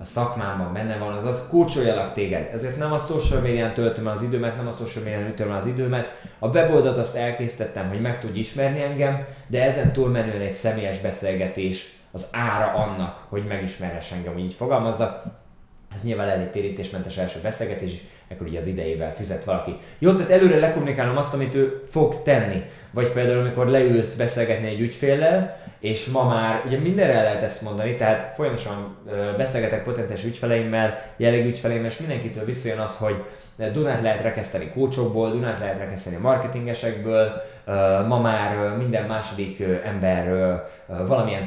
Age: 20-39